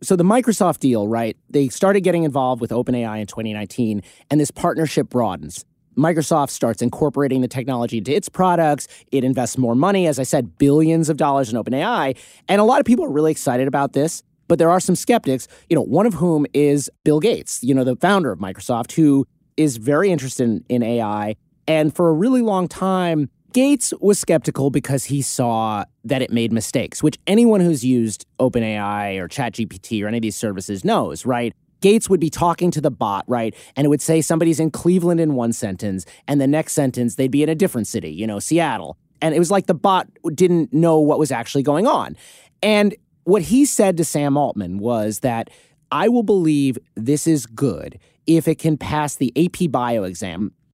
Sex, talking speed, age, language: male, 200 wpm, 30-49, English